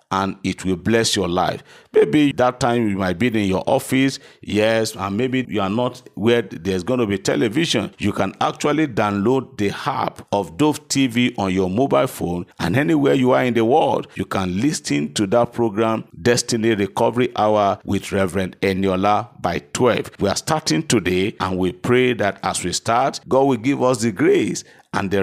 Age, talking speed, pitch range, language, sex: 50-69, 190 wpm, 95-125 Hz, English, male